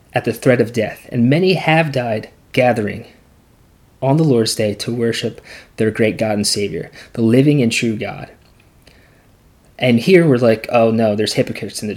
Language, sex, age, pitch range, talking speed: English, male, 20-39, 115-150 Hz, 180 wpm